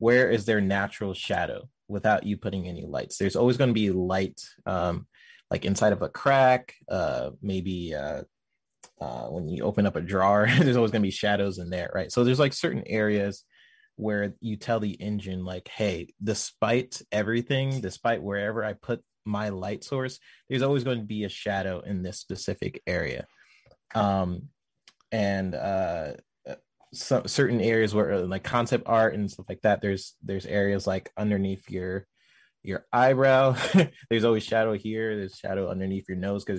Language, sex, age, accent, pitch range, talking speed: English, male, 20-39, American, 95-115 Hz, 170 wpm